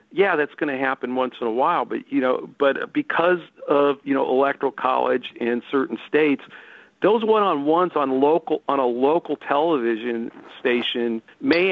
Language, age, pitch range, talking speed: English, 50-69, 120-150 Hz, 165 wpm